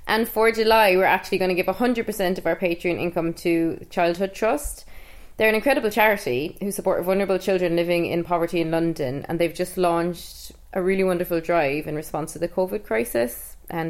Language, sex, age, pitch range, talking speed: English, female, 20-39, 170-195 Hz, 190 wpm